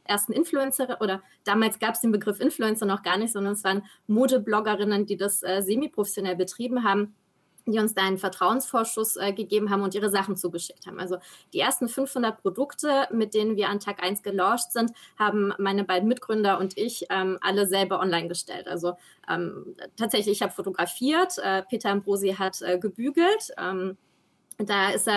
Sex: female